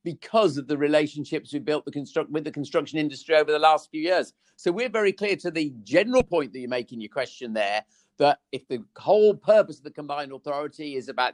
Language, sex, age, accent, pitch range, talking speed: English, male, 50-69, British, 130-155 Hz, 215 wpm